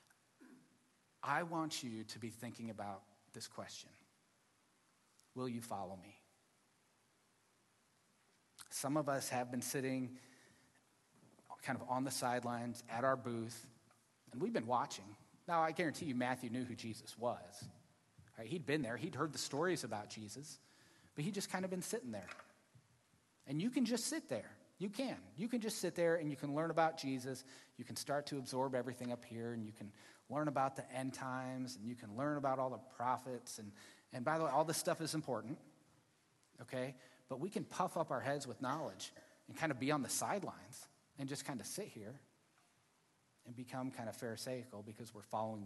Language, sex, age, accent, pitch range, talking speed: English, male, 30-49, American, 115-145 Hz, 185 wpm